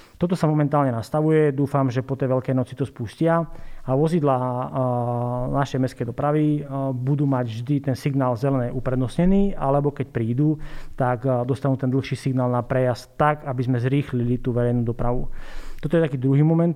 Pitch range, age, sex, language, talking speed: 125-145 Hz, 30-49, male, Slovak, 165 wpm